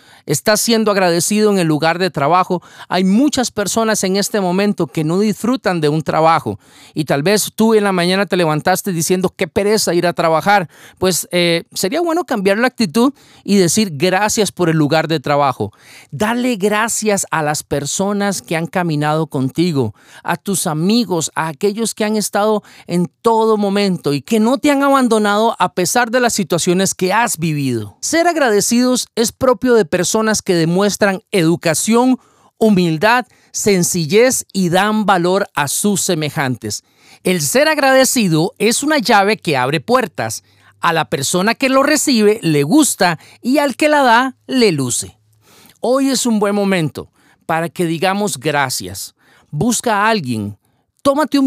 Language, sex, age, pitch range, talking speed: Spanish, male, 40-59, 160-220 Hz, 165 wpm